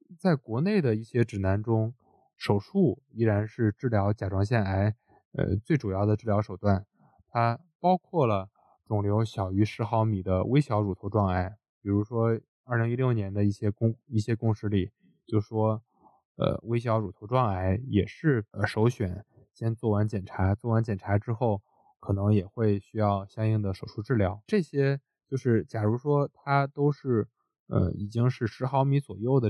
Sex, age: male, 20-39